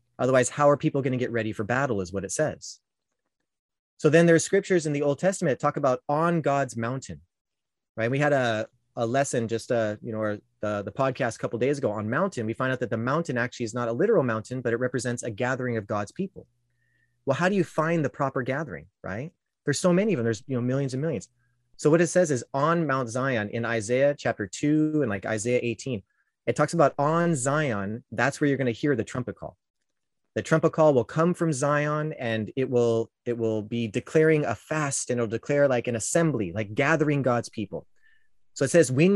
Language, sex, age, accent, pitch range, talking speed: English, male, 30-49, American, 115-155 Hz, 225 wpm